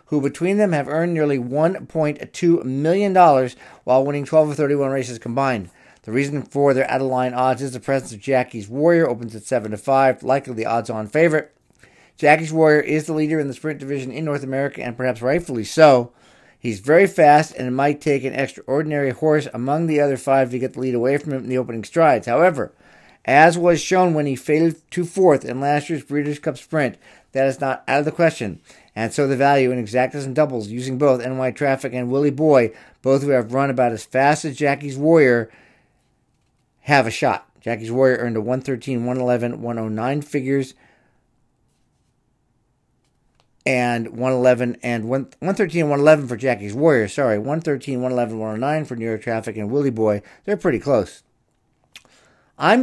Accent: American